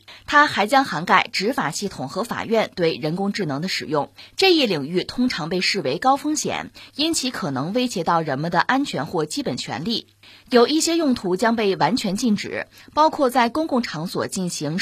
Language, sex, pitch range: Chinese, female, 175-255 Hz